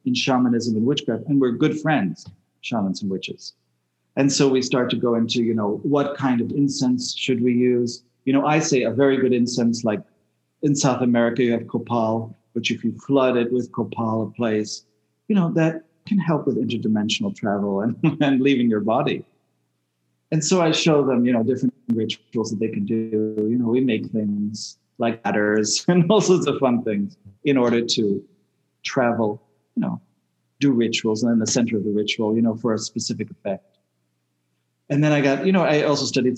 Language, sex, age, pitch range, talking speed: English, male, 40-59, 110-135 Hz, 200 wpm